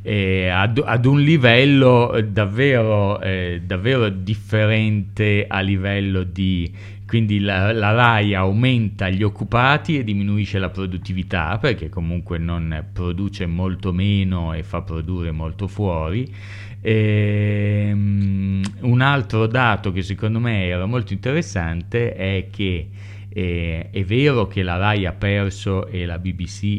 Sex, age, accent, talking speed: male, 30-49, native, 130 wpm